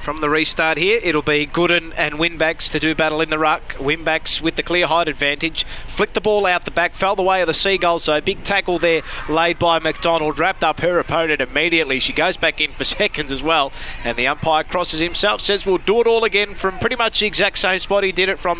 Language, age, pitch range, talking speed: English, 20-39, 170-190 Hz, 240 wpm